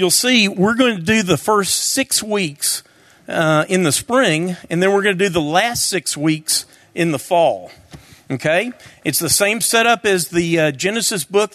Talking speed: 190 wpm